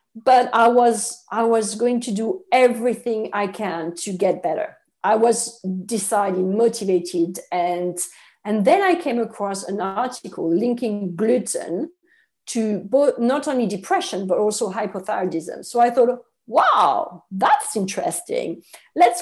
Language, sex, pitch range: English, female, 195-250 Hz